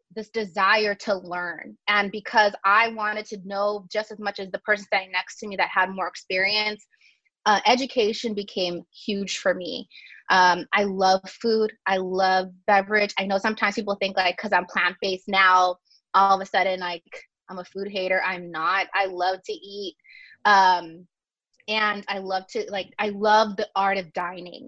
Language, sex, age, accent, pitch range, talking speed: English, female, 20-39, American, 185-210 Hz, 180 wpm